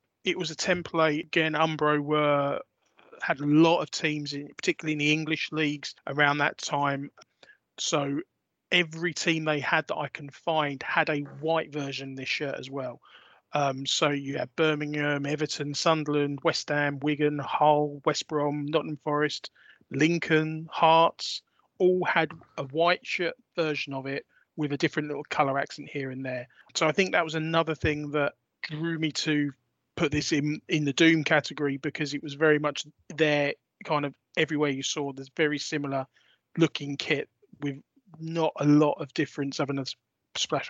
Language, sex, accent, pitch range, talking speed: English, male, British, 140-155 Hz, 170 wpm